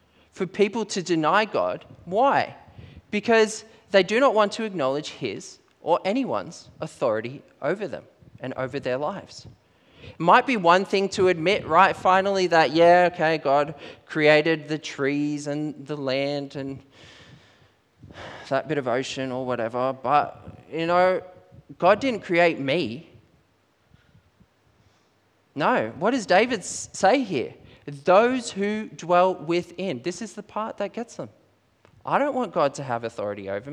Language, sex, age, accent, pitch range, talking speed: English, male, 20-39, Australian, 125-185 Hz, 145 wpm